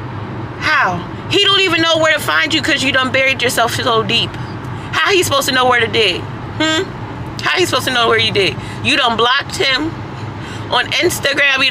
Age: 30-49